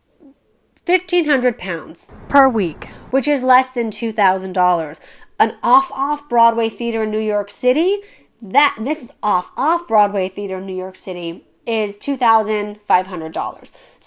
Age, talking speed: 30-49, 130 wpm